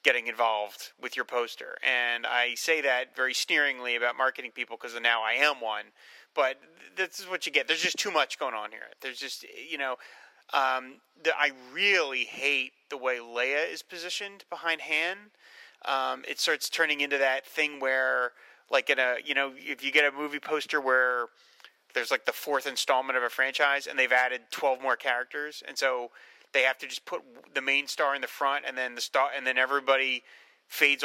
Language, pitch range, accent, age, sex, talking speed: English, 125-150 Hz, American, 30-49, male, 205 wpm